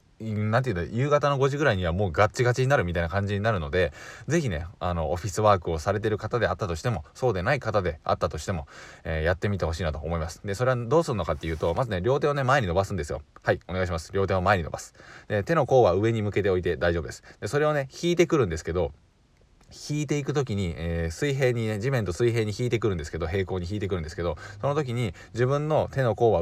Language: Japanese